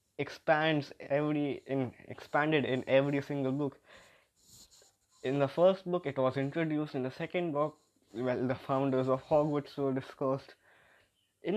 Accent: Indian